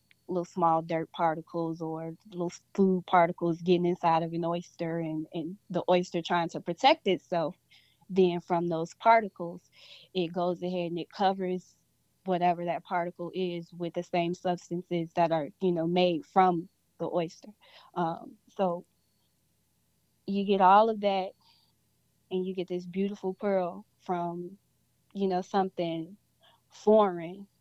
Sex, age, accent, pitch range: female, 20-39, American, 170-190 Hz